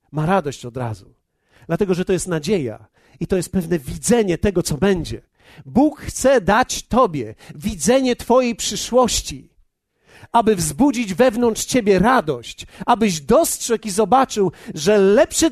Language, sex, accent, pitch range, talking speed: Polish, male, native, 155-235 Hz, 135 wpm